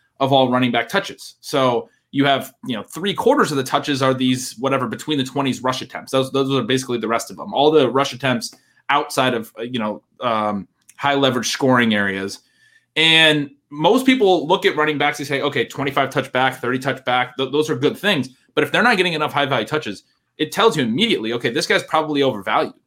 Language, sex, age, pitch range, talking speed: English, male, 20-39, 120-140 Hz, 220 wpm